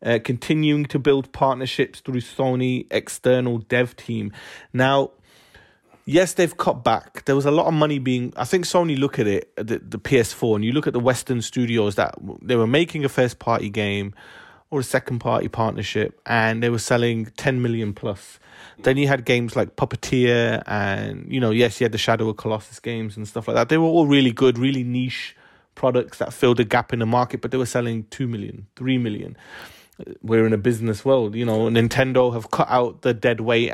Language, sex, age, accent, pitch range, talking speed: English, male, 30-49, British, 115-140 Hz, 205 wpm